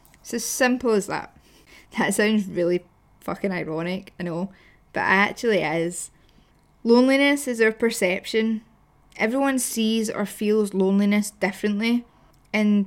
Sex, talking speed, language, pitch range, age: female, 125 wpm, English, 195-235 Hz, 10-29